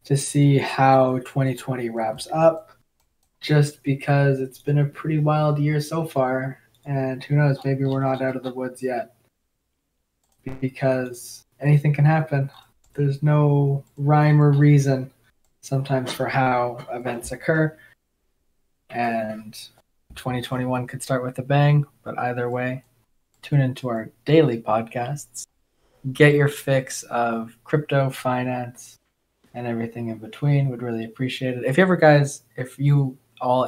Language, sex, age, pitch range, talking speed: English, male, 20-39, 115-140 Hz, 135 wpm